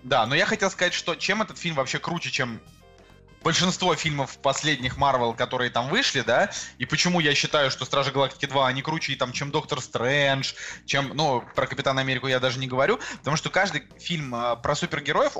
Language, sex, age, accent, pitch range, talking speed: Russian, male, 20-39, native, 135-170 Hz, 185 wpm